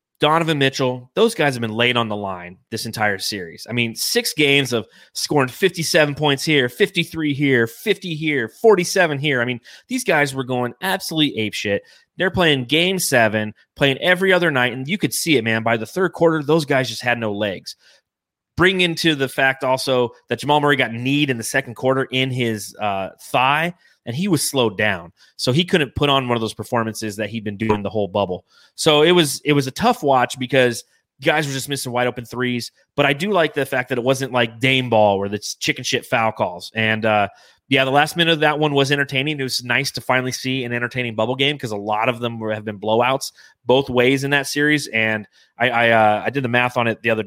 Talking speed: 225 wpm